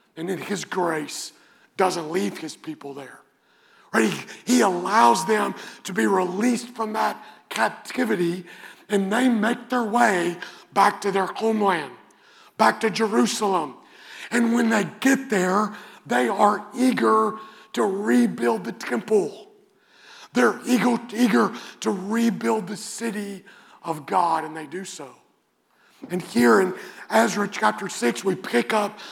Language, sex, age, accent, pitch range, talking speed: English, male, 50-69, American, 185-225 Hz, 135 wpm